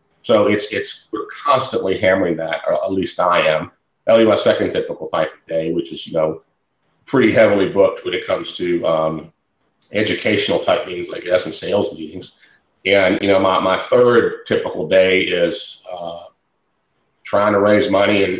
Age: 40-59